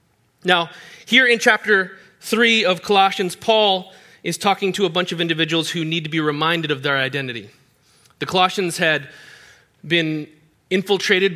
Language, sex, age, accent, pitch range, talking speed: English, male, 30-49, American, 155-200 Hz, 150 wpm